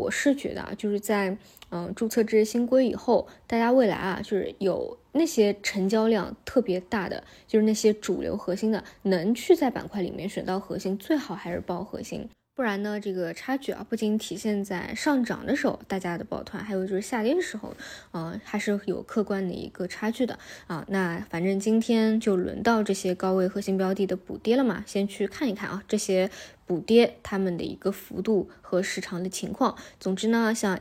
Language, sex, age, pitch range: Chinese, female, 20-39, 190-230 Hz